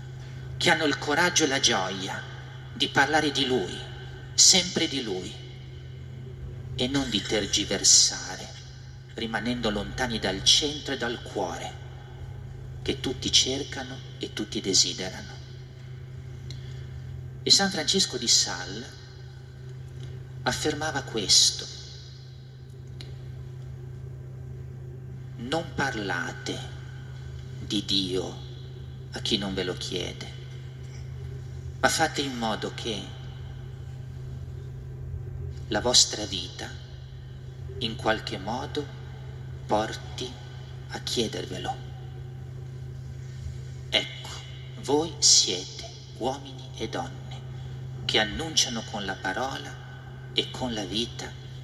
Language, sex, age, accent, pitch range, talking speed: Italian, male, 40-59, native, 125-130 Hz, 90 wpm